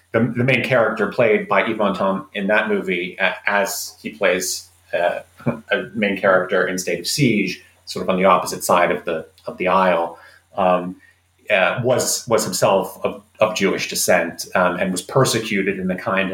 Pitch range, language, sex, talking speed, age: 90-115 Hz, English, male, 185 wpm, 30-49